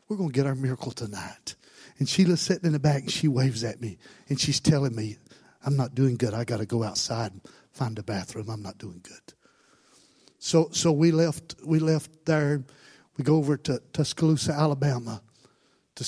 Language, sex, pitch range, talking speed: English, male, 130-150 Hz, 200 wpm